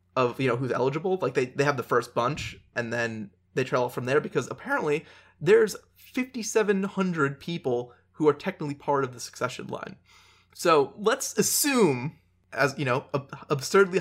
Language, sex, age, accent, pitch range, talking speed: English, male, 20-39, American, 120-160 Hz, 165 wpm